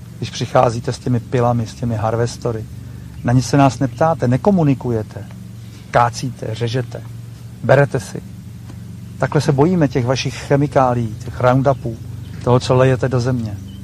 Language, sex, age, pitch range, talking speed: Czech, male, 50-69, 115-145 Hz, 135 wpm